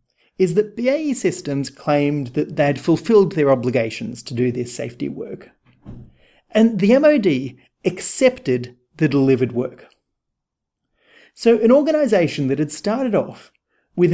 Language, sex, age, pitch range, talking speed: English, male, 30-49, 140-220 Hz, 130 wpm